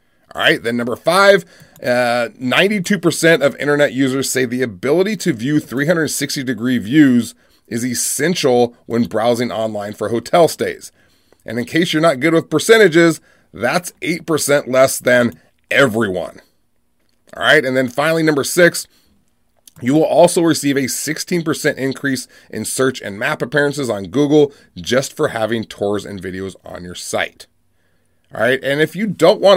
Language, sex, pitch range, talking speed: English, male, 120-160 Hz, 150 wpm